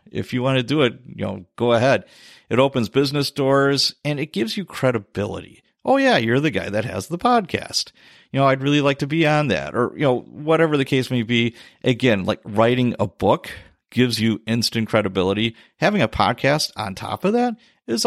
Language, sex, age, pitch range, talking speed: English, male, 50-69, 110-140 Hz, 205 wpm